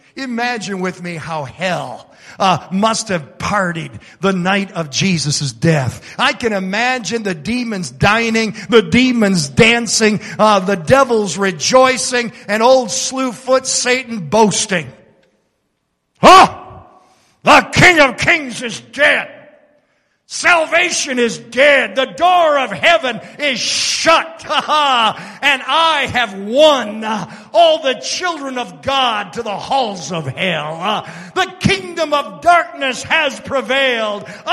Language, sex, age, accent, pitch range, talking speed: English, male, 50-69, American, 205-280 Hz, 120 wpm